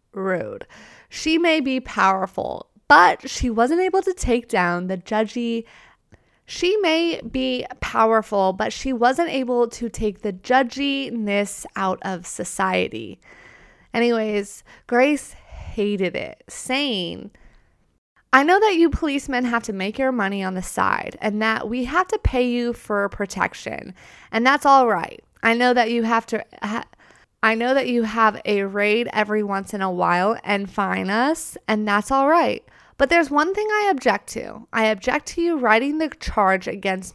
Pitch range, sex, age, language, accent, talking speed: 200-265 Hz, female, 20-39, English, American, 165 wpm